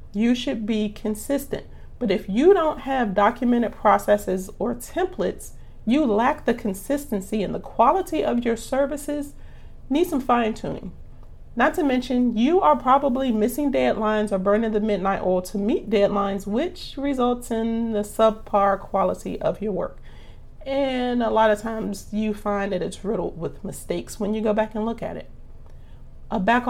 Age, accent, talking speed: 40-59, American, 165 wpm